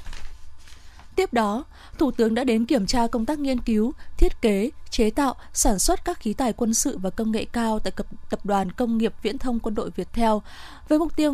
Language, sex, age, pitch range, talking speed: Vietnamese, female, 20-39, 215-270 Hz, 210 wpm